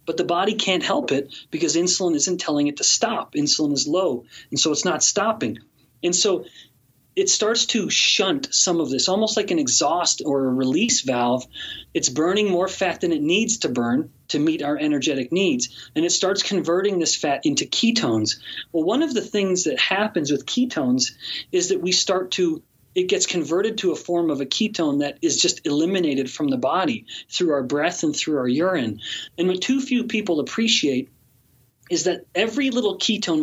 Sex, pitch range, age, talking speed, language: male, 145-220 Hz, 30-49, 195 wpm, English